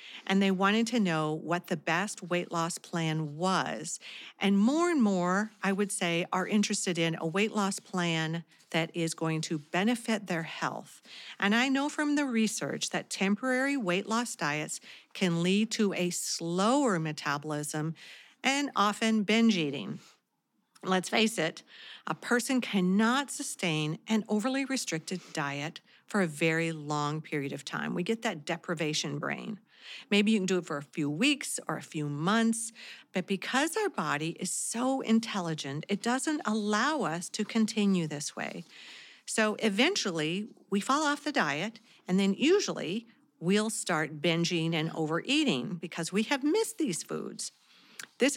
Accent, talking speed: American, 160 wpm